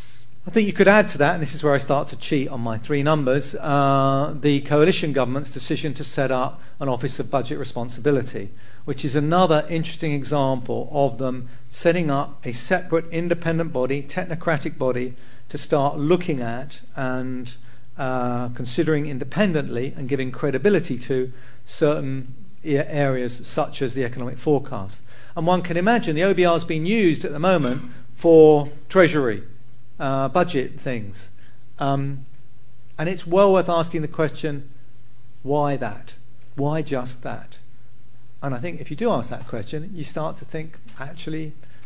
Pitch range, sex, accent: 125-155 Hz, male, British